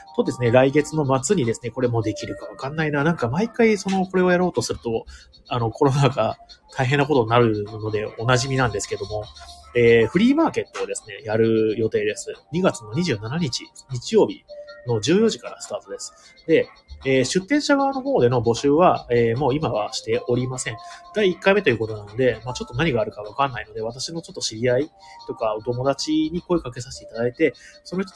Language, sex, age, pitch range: Japanese, male, 30-49, 115-160 Hz